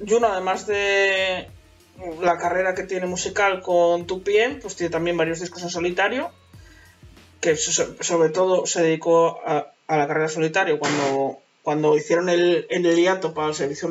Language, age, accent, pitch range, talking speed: Spanish, 20-39, Spanish, 165-220 Hz, 155 wpm